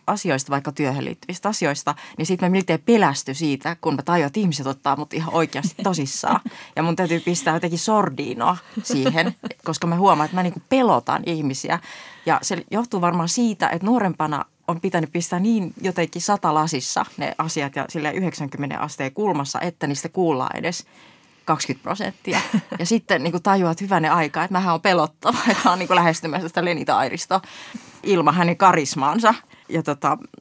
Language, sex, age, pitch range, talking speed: Finnish, female, 30-49, 150-190 Hz, 160 wpm